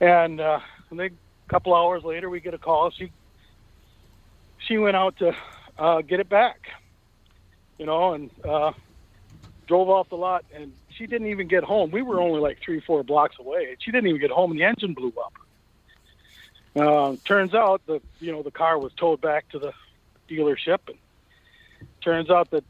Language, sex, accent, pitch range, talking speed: English, male, American, 140-185 Hz, 190 wpm